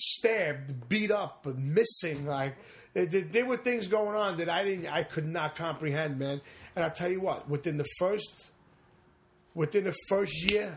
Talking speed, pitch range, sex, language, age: 165 wpm, 145-190 Hz, male, English, 30-49